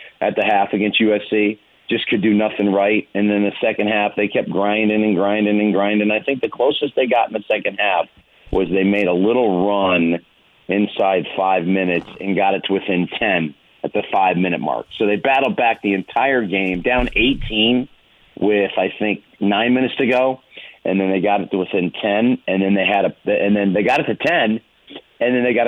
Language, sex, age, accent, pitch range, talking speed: English, male, 40-59, American, 100-125 Hz, 215 wpm